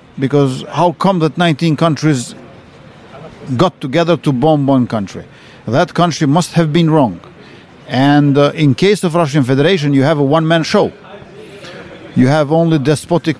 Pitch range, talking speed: 145-175 Hz, 150 wpm